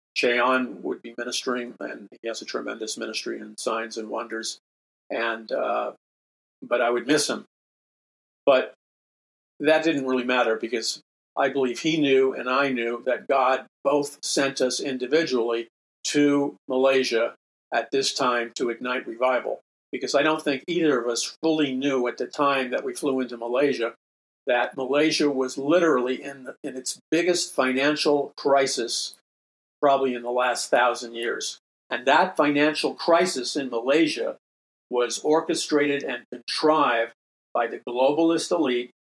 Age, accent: 50-69, American